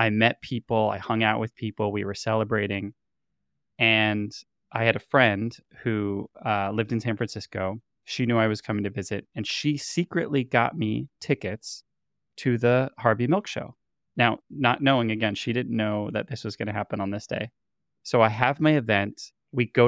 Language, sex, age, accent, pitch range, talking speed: English, male, 20-39, American, 105-125 Hz, 190 wpm